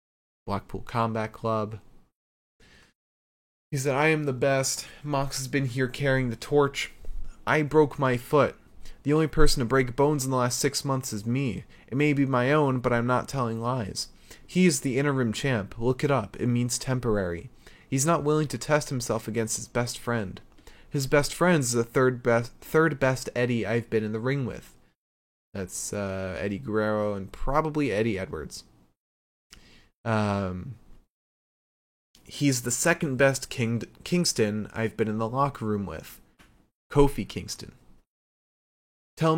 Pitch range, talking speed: 110-135 Hz, 160 wpm